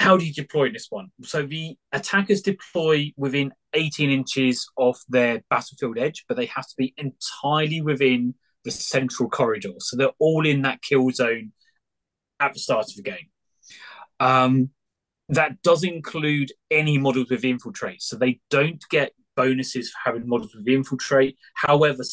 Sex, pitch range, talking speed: male, 125-155 Hz, 170 wpm